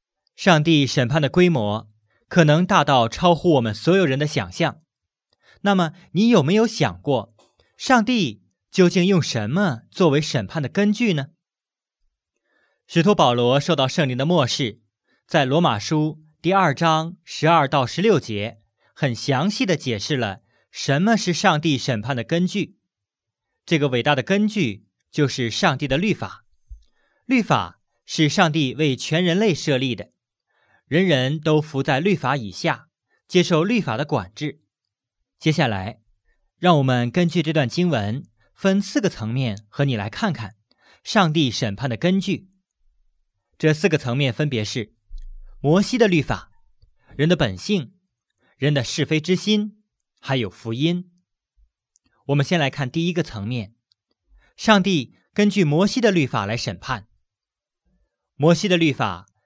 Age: 20-39